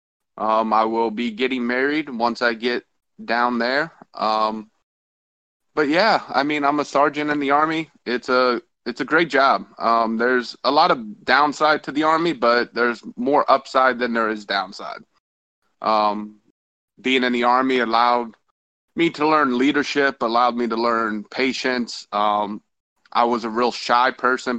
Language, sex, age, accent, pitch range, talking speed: English, male, 20-39, American, 115-130 Hz, 165 wpm